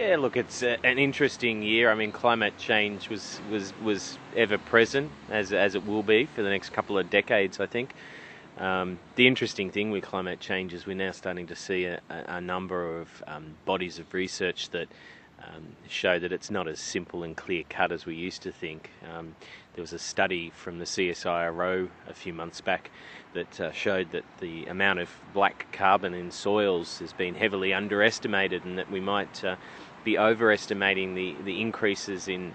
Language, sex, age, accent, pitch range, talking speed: English, male, 30-49, Australian, 95-110 Hz, 190 wpm